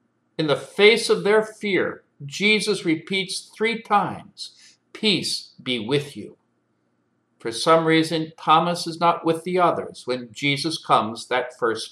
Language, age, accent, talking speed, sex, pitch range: English, 60-79, American, 140 wpm, male, 140-185 Hz